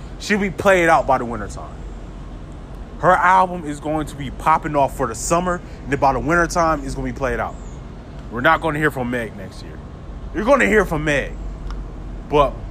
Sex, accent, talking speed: male, American, 210 wpm